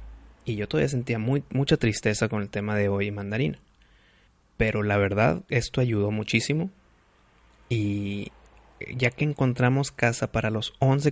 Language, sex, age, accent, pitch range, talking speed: Spanish, male, 20-39, Mexican, 100-120 Hz, 140 wpm